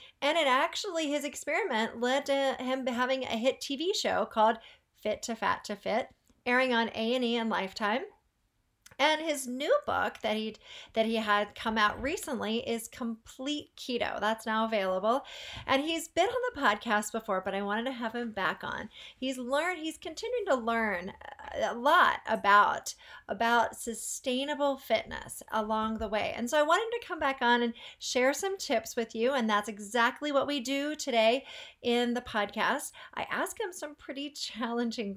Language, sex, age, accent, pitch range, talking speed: English, female, 40-59, American, 225-290 Hz, 175 wpm